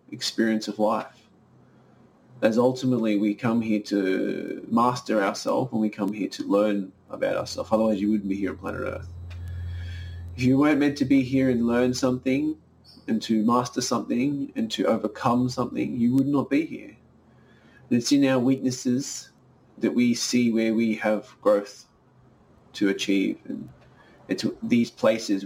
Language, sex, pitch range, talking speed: English, male, 105-125 Hz, 160 wpm